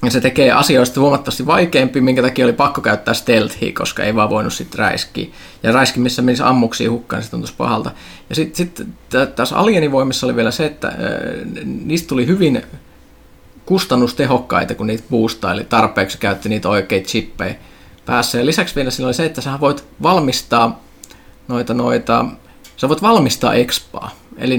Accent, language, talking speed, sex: native, Finnish, 165 wpm, male